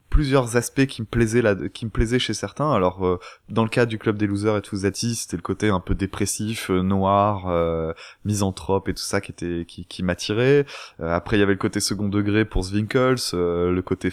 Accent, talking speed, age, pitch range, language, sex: French, 230 wpm, 20-39, 95-120 Hz, French, male